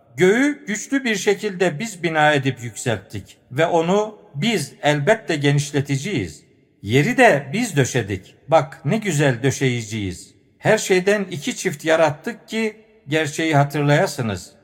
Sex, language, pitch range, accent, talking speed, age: male, Turkish, 140-195 Hz, native, 120 wpm, 50-69